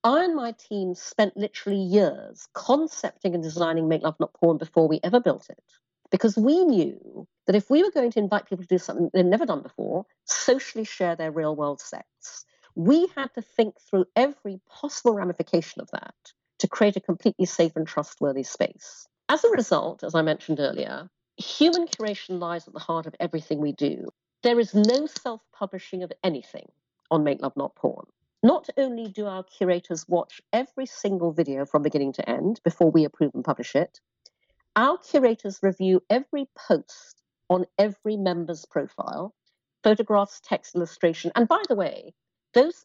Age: 50-69